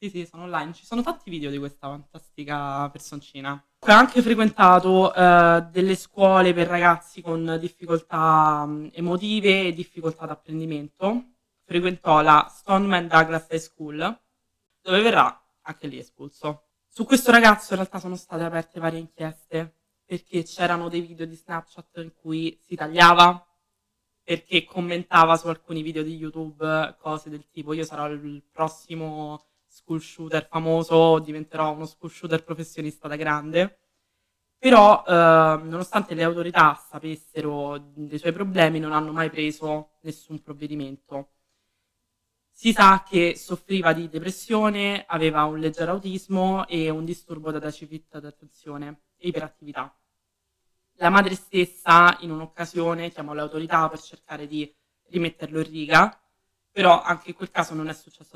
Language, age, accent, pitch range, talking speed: Italian, 20-39, native, 155-175 Hz, 140 wpm